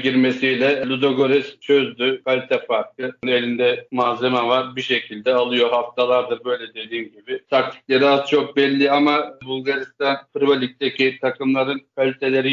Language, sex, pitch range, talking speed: Turkish, male, 125-140 Hz, 115 wpm